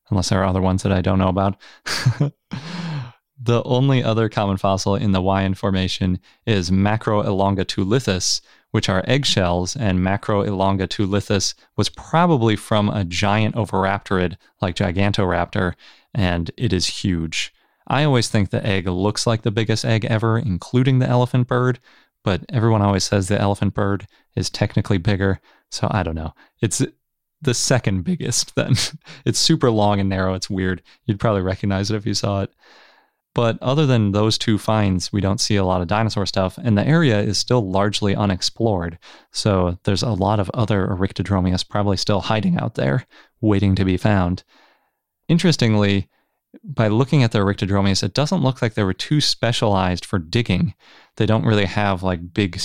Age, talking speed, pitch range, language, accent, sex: 30-49, 165 wpm, 95-115 Hz, English, American, male